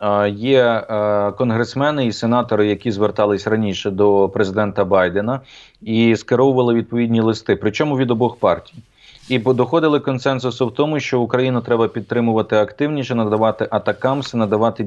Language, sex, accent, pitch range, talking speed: Ukrainian, male, native, 110-135 Hz, 135 wpm